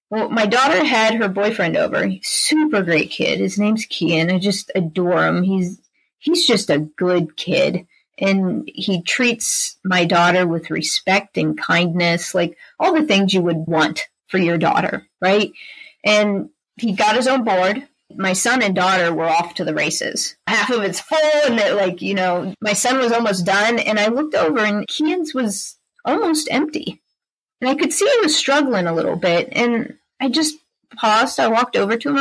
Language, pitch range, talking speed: English, 180-260 Hz, 190 wpm